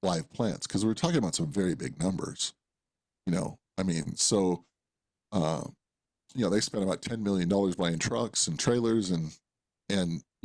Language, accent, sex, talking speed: English, American, male, 180 wpm